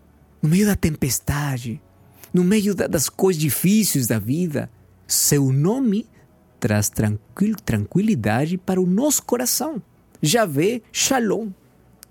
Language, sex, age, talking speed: Portuguese, male, 50-69, 105 wpm